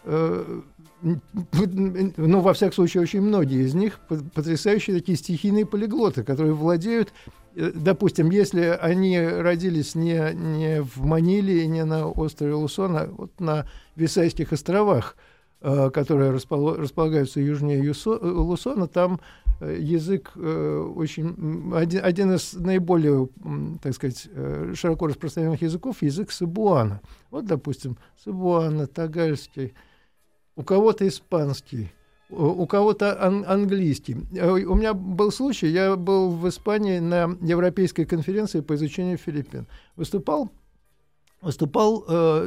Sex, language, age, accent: male, Russian, 50-69, native